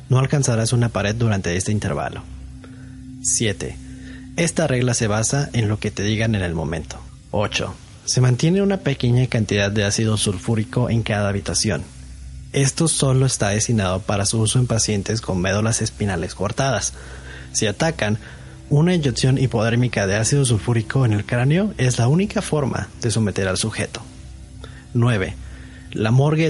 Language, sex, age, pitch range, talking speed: Spanish, male, 30-49, 100-130 Hz, 150 wpm